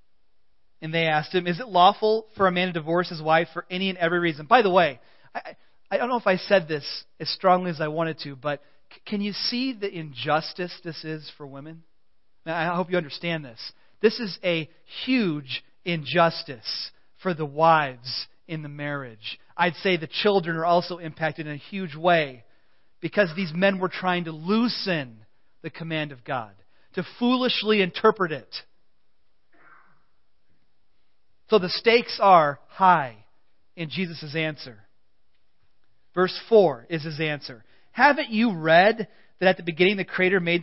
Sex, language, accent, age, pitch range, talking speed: male, English, American, 40-59, 150-185 Hz, 165 wpm